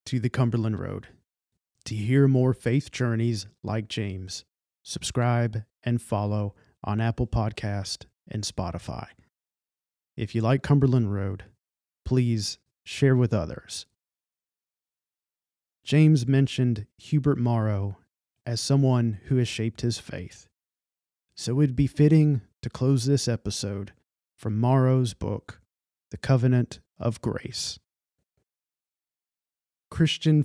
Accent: American